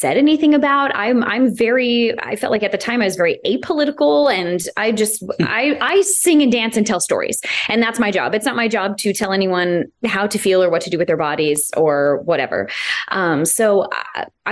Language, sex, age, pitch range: English, female, 20-39, 170-220 Hz